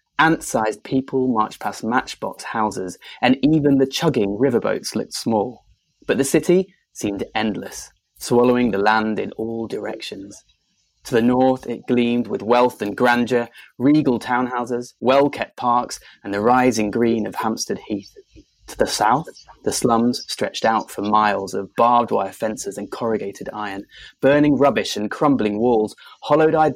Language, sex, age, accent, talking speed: English, male, 20-39, British, 150 wpm